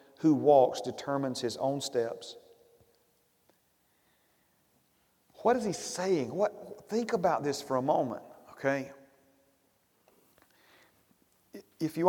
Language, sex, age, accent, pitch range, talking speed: English, male, 40-59, American, 140-195 Hz, 100 wpm